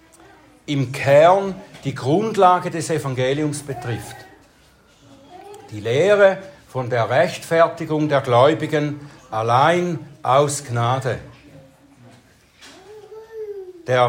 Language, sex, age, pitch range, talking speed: German, male, 60-79, 135-185 Hz, 75 wpm